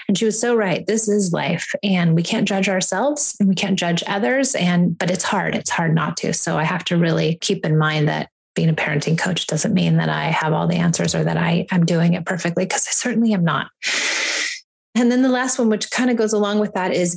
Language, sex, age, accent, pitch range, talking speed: English, female, 30-49, American, 170-210 Hz, 250 wpm